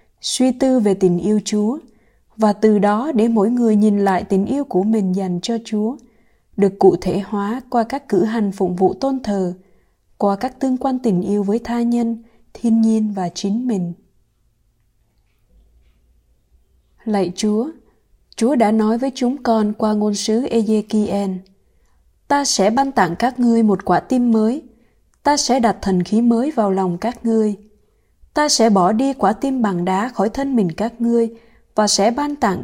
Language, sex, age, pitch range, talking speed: Vietnamese, female, 20-39, 195-240 Hz, 175 wpm